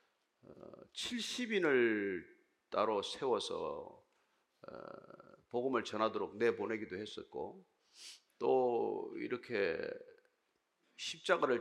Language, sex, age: Korean, male, 40-59